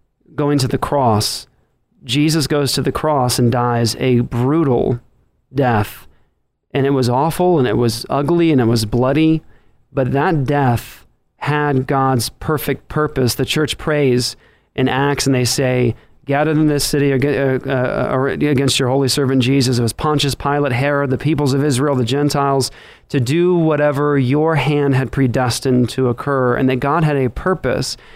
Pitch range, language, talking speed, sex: 125-145 Hz, English, 165 wpm, male